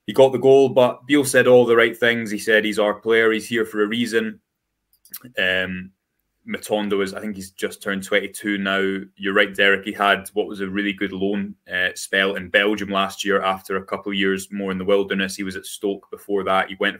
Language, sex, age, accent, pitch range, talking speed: English, male, 20-39, British, 95-110 Hz, 230 wpm